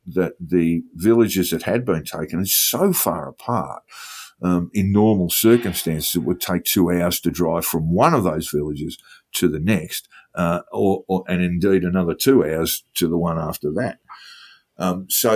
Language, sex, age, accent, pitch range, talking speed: English, male, 50-69, Australian, 85-100 Hz, 175 wpm